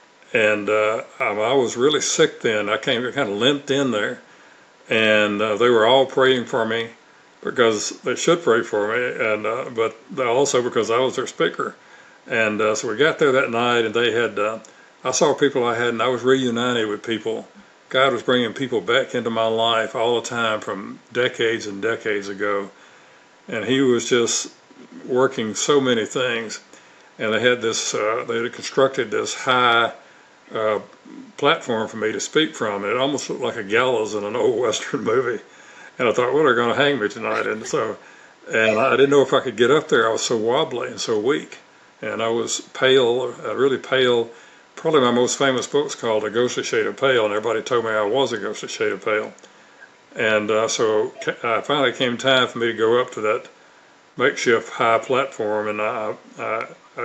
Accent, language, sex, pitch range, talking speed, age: American, English, male, 110-135 Hz, 200 wpm, 60-79